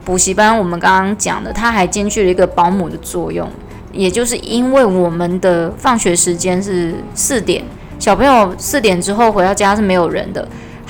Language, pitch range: Chinese, 170-210 Hz